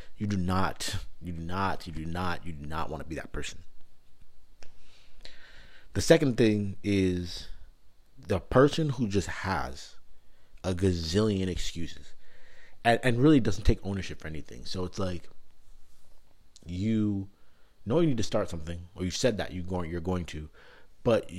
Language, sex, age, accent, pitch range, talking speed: English, male, 30-49, American, 85-110 Hz, 160 wpm